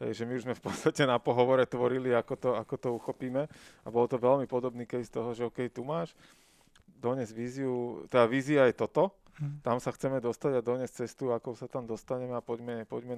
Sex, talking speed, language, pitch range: male, 205 wpm, Slovak, 115-130 Hz